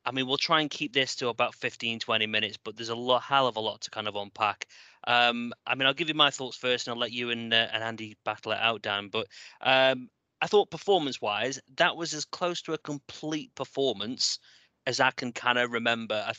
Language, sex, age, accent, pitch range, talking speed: English, male, 30-49, British, 110-130 Hz, 240 wpm